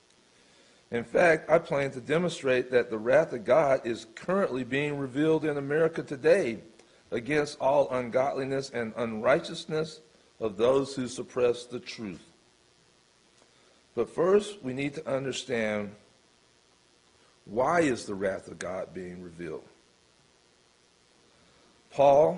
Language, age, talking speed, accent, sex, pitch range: English, 50-69, 120 wpm, American, male, 115-150 Hz